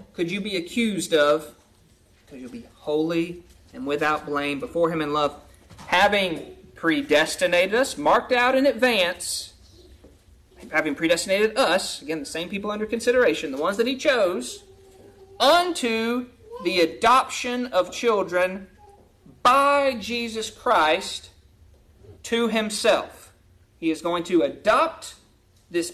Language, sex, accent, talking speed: English, male, American, 125 wpm